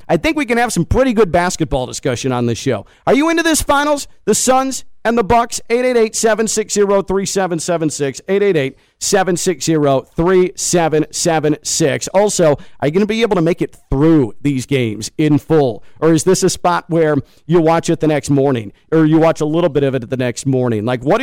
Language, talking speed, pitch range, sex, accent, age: English, 210 wpm, 140-185 Hz, male, American, 40-59